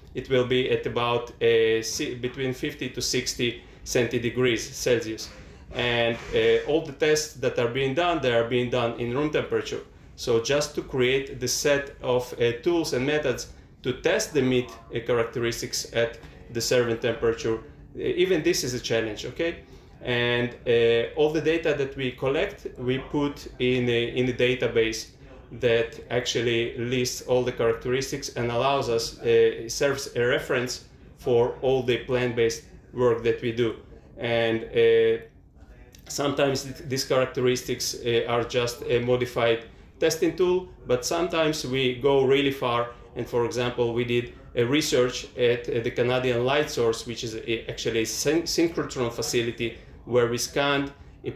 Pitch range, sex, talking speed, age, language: 120-140 Hz, male, 155 wpm, 30-49, English